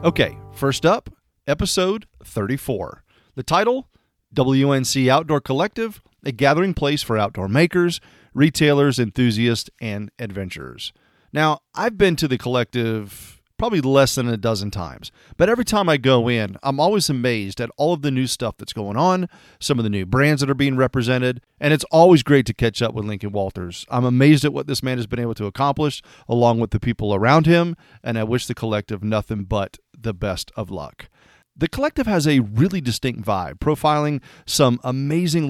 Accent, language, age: American, English, 40-59